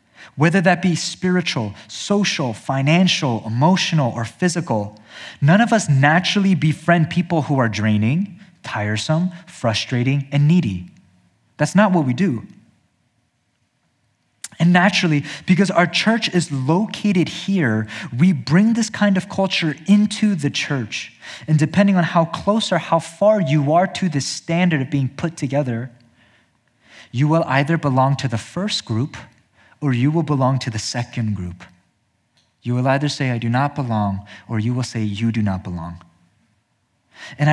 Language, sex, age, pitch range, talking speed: English, male, 20-39, 115-170 Hz, 150 wpm